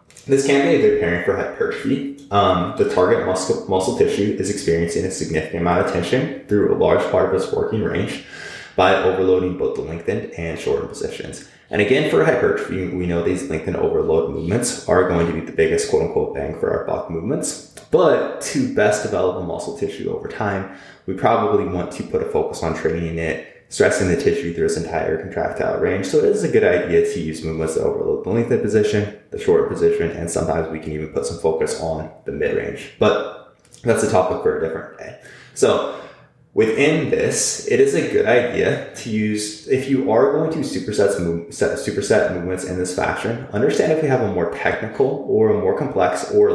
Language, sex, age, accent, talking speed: English, male, 20-39, American, 200 wpm